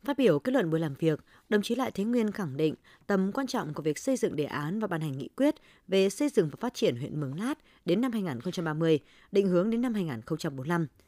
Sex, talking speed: female, 245 wpm